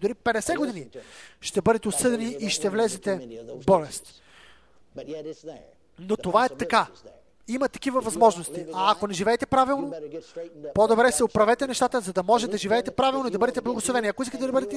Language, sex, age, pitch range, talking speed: English, male, 30-49, 210-290 Hz, 165 wpm